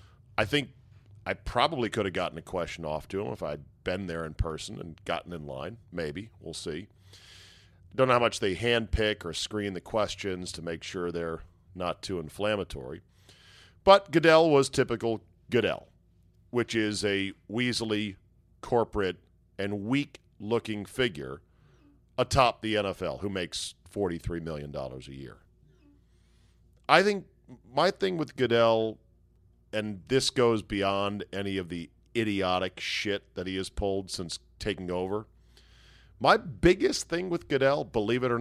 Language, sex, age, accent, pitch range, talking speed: English, male, 40-59, American, 90-120 Hz, 145 wpm